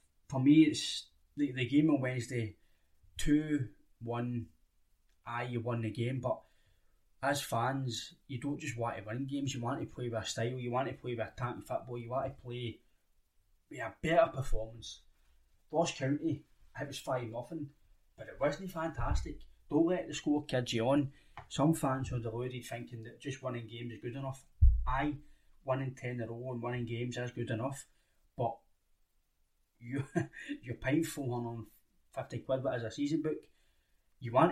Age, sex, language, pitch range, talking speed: 20-39, male, English, 110-145 Hz, 175 wpm